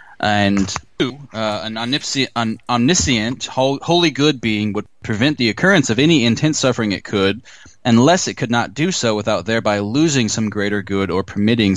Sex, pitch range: male, 95-115 Hz